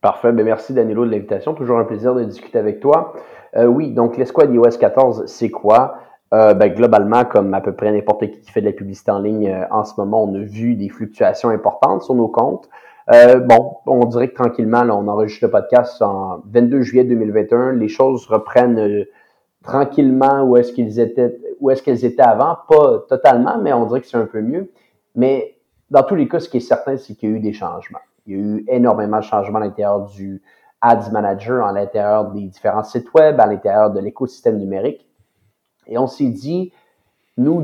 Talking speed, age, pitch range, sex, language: 205 wpm, 30-49, 105-130 Hz, male, French